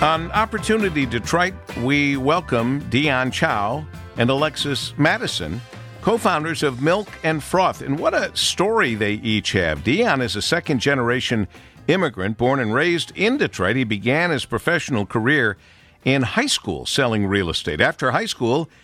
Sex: male